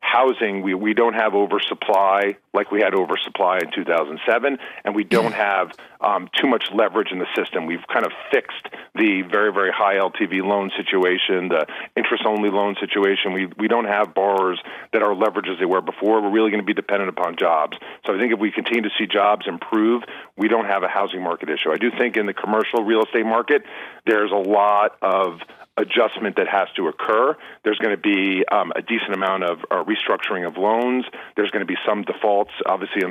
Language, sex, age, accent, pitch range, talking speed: English, male, 40-59, American, 95-110 Hz, 210 wpm